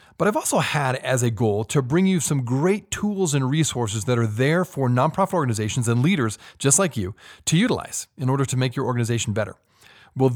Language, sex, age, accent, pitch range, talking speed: English, male, 30-49, American, 110-155 Hz, 210 wpm